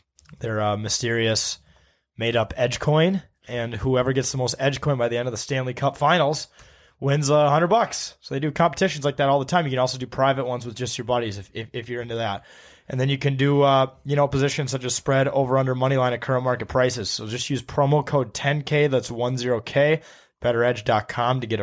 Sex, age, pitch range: male, 20-39, 110-140 Hz